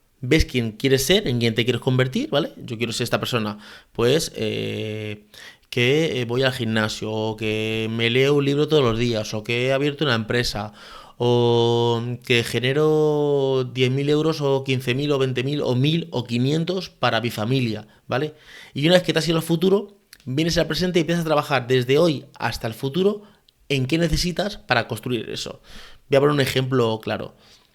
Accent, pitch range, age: Spanish, 120-155 Hz, 30-49